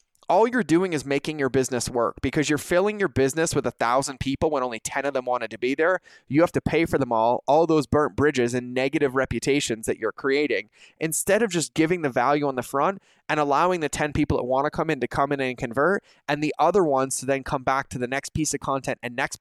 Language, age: English, 20-39